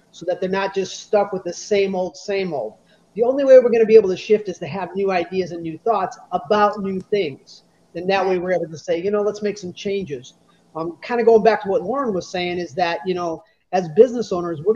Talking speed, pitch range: 260 wpm, 170-205 Hz